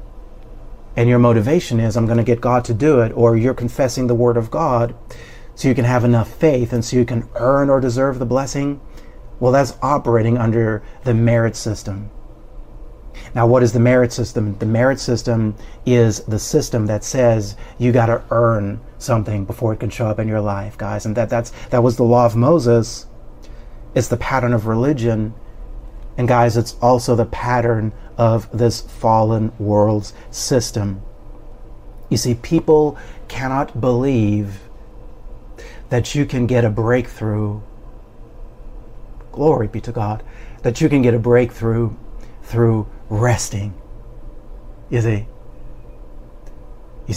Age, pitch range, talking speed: 40-59, 110-125 Hz, 155 wpm